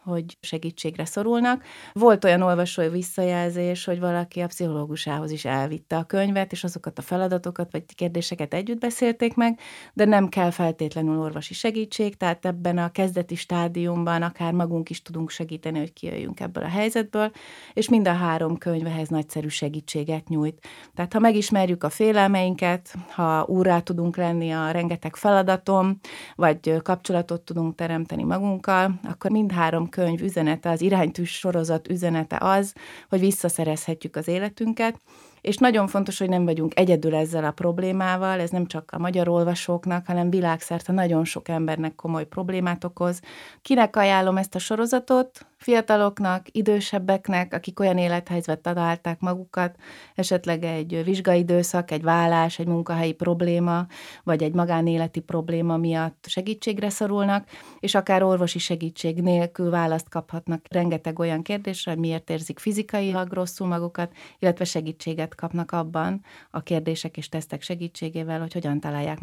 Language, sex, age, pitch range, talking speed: Hungarian, female, 30-49, 165-190 Hz, 140 wpm